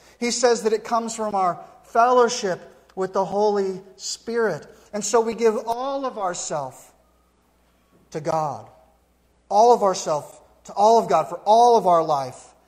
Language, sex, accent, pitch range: English, male, American, 135-205 Hz